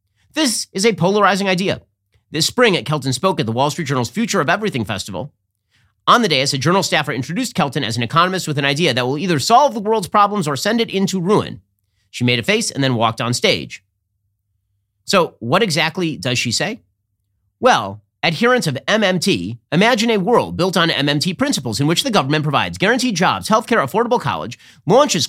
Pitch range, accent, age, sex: 110-185 Hz, American, 40-59, male